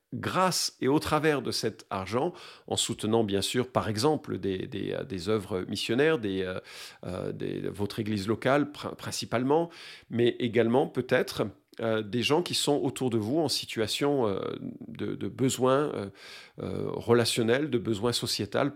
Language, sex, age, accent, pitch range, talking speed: French, male, 50-69, French, 105-135 Hz, 155 wpm